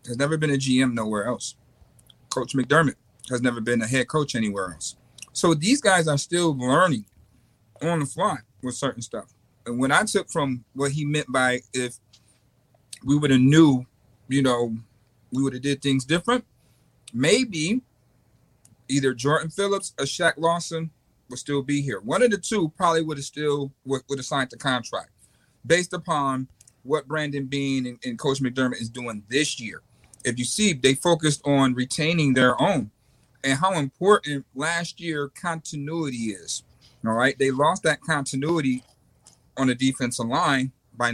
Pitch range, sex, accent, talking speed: 120-155 Hz, male, American, 170 wpm